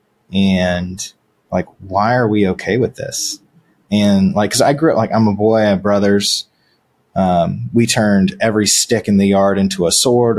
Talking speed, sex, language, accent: 180 wpm, male, English, American